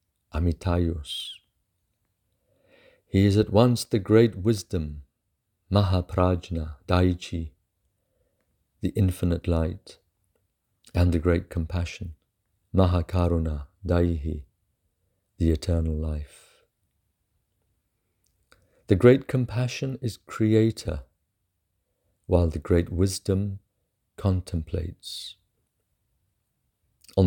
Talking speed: 75 wpm